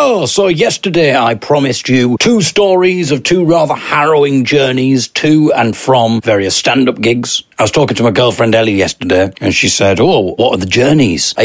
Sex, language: male, English